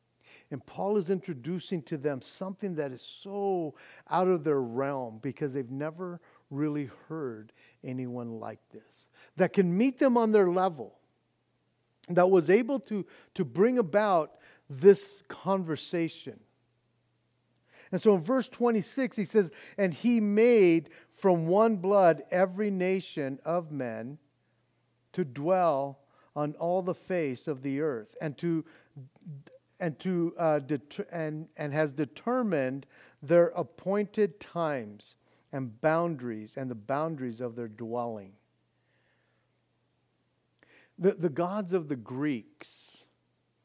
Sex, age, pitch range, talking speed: male, 50-69, 135-190 Hz, 125 wpm